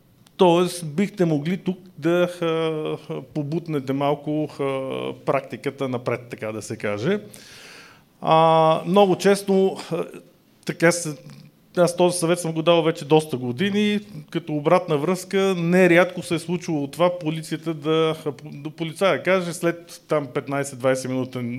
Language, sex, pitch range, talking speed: Bulgarian, male, 135-175 Hz, 120 wpm